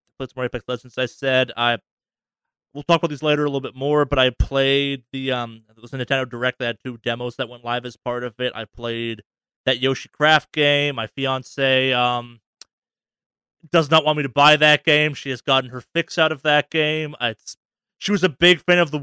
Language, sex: English, male